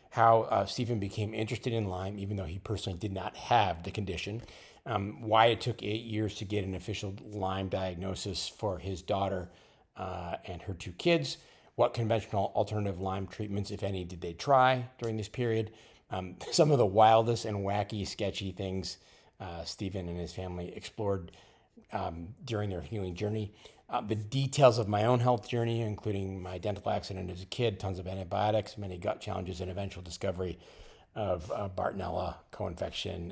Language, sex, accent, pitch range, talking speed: English, male, American, 95-110 Hz, 175 wpm